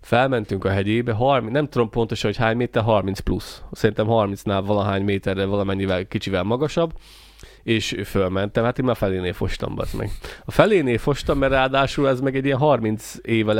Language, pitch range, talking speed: Hungarian, 105-140 Hz, 160 wpm